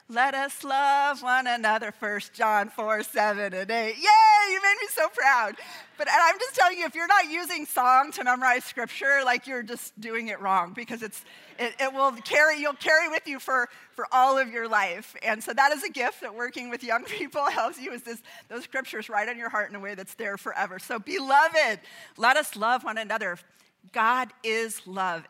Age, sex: 40-59, female